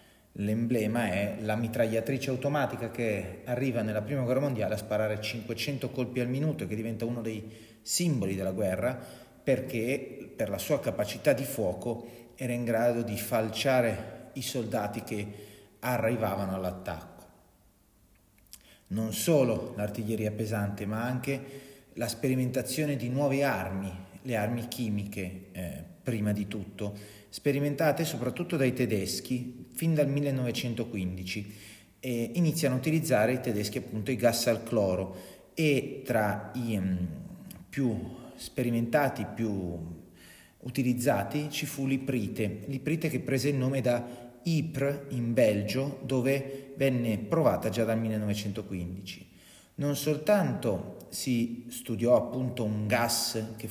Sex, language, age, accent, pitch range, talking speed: male, Italian, 30-49, native, 105-130 Hz, 125 wpm